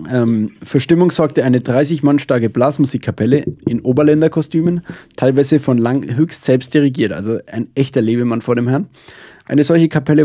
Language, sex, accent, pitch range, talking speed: German, male, German, 120-145 Hz, 160 wpm